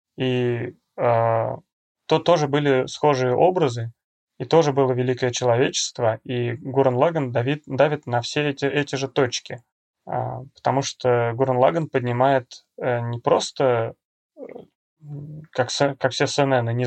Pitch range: 125-140 Hz